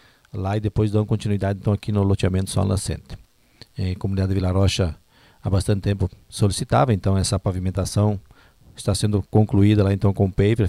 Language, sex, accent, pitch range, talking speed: Portuguese, male, Brazilian, 95-110 Hz, 170 wpm